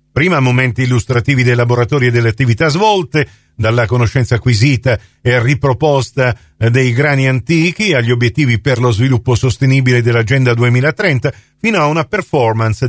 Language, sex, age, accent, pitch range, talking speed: Italian, male, 50-69, native, 125-180 Hz, 135 wpm